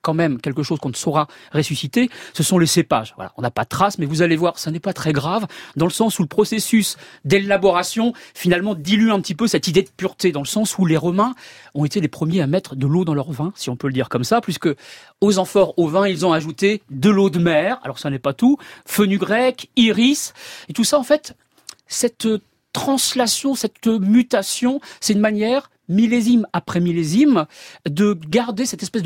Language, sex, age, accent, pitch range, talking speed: French, male, 40-59, French, 150-210 Hz, 215 wpm